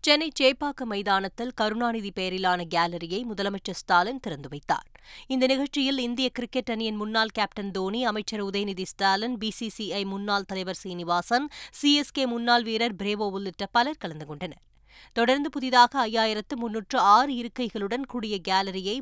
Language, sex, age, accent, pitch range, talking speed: Tamil, female, 20-39, native, 205-260 Hz, 120 wpm